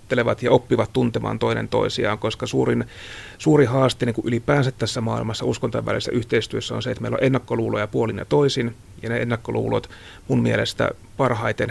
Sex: male